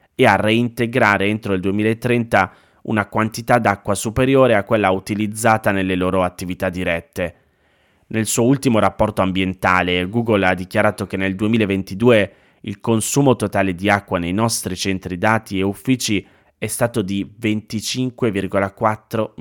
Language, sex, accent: Italian, male, native